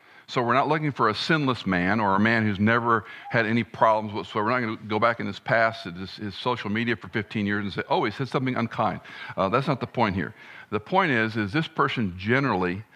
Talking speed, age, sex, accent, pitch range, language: 245 wpm, 50-69, male, American, 105-135 Hz, English